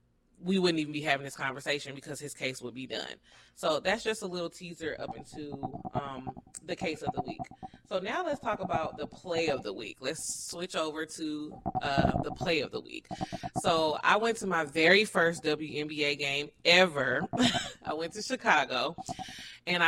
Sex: female